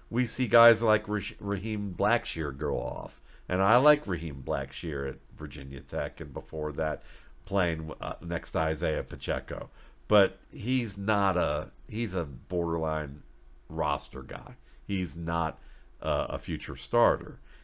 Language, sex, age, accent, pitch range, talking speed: English, male, 50-69, American, 80-95 Hz, 130 wpm